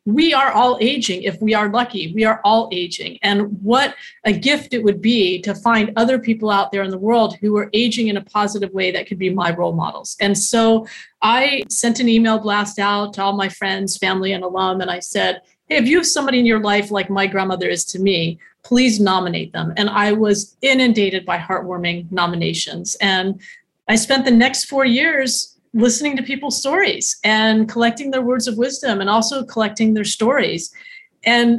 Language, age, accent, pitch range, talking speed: English, 40-59, American, 190-230 Hz, 200 wpm